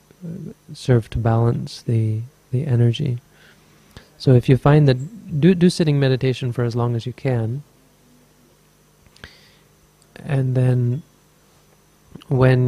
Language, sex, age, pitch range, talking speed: English, male, 30-49, 115-140 Hz, 115 wpm